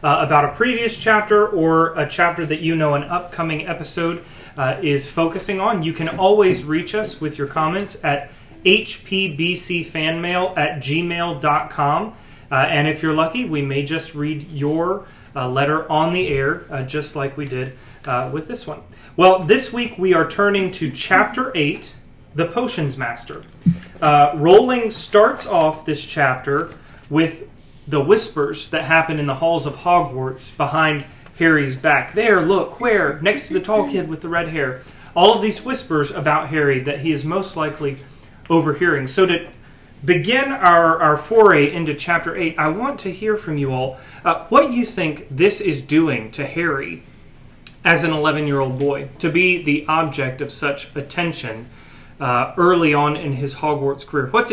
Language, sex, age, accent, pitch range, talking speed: English, male, 30-49, American, 145-180 Hz, 165 wpm